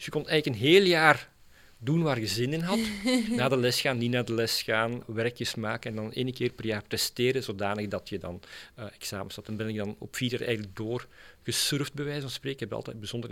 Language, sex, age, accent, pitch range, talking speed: English, male, 40-59, Belgian, 105-130 Hz, 250 wpm